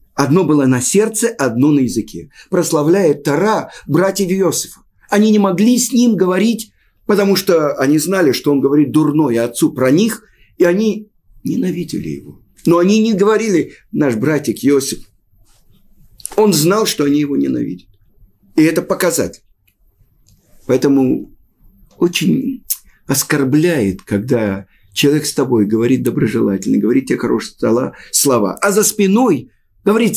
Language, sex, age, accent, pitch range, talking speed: Russian, male, 50-69, native, 120-200 Hz, 130 wpm